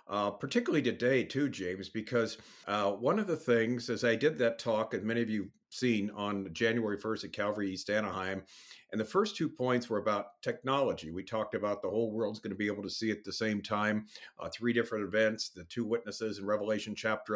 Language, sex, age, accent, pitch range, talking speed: English, male, 50-69, American, 105-125 Hz, 220 wpm